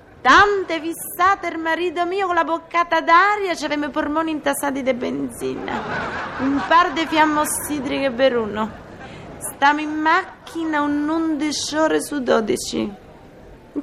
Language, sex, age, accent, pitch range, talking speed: Italian, female, 30-49, native, 205-305 Hz, 140 wpm